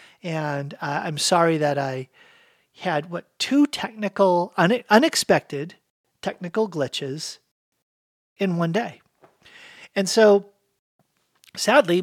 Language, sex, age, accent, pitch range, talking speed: English, male, 50-69, American, 150-200 Hz, 100 wpm